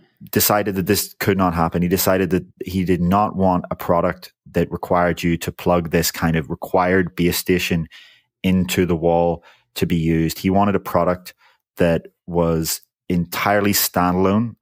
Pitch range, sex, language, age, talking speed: 85-100 Hz, male, English, 20-39, 165 wpm